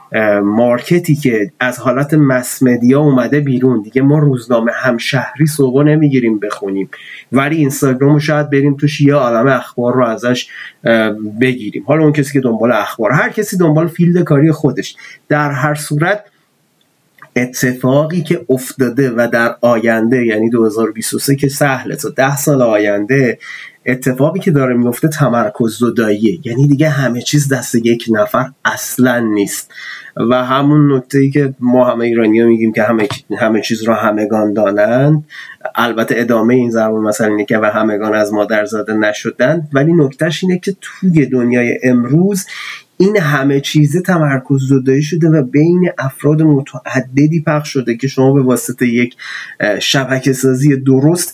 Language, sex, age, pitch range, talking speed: Persian, male, 30-49, 120-150 Hz, 150 wpm